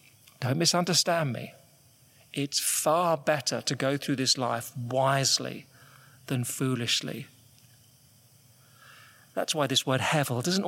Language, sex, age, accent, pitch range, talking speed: English, male, 40-59, British, 125-165 Hz, 110 wpm